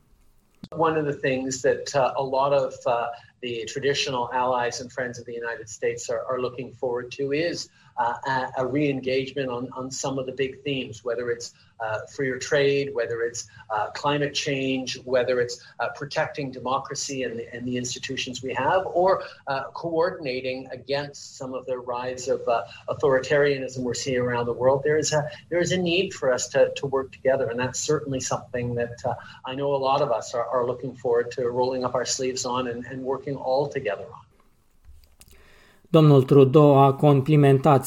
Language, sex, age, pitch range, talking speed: Romanian, male, 40-59, 125-145 Hz, 185 wpm